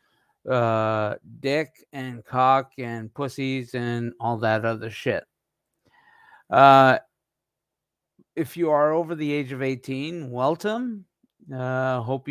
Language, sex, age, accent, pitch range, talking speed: English, male, 50-69, American, 130-155 Hz, 110 wpm